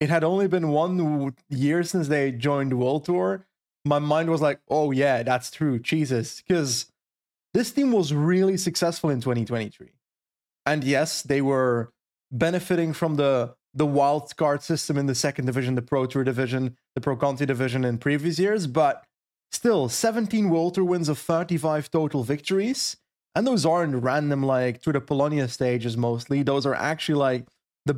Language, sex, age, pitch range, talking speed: English, male, 30-49, 140-180 Hz, 175 wpm